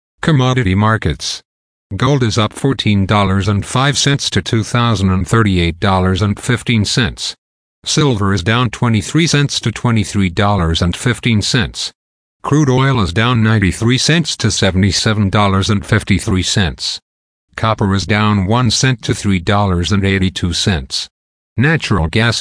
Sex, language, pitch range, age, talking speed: male, English, 95-125 Hz, 50-69, 80 wpm